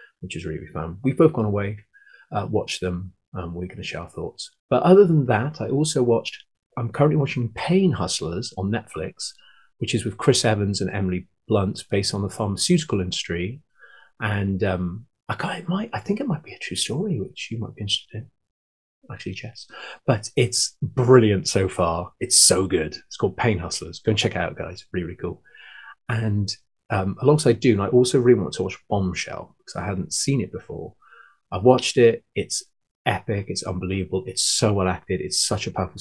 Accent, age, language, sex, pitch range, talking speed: British, 30-49, English, male, 90-125 Hz, 200 wpm